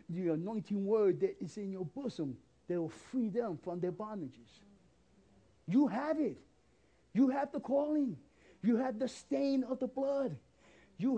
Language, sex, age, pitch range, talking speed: English, male, 50-69, 215-300 Hz, 160 wpm